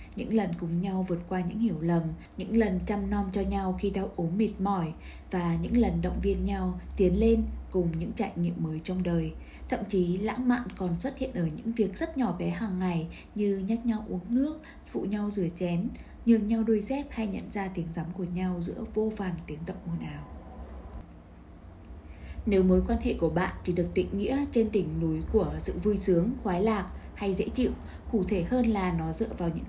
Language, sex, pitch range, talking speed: Vietnamese, female, 175-225 Hz, 215 wpm